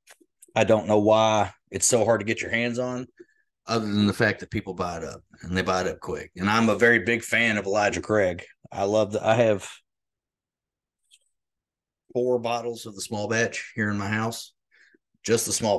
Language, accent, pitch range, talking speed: English, American, 95-115 Hz, 205 wpm